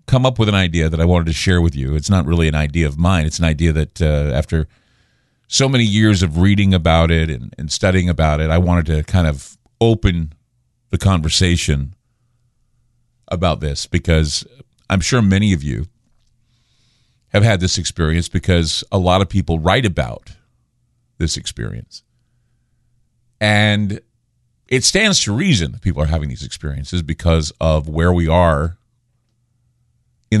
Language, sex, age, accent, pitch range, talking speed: English, male, 50-69, American, 80-120 Hz, 165 wpm